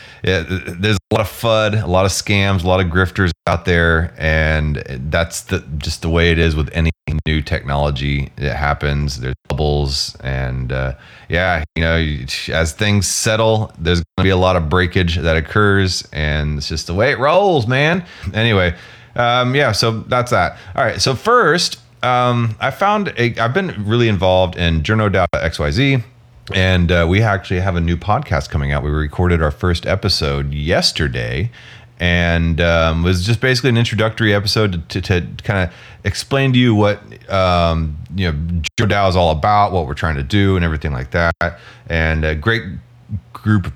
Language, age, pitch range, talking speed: English, 30-49, 80-105 Hz, 185 wpm